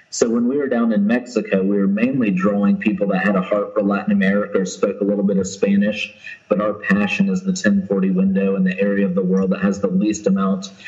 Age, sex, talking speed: 30-49, male, 245 wpm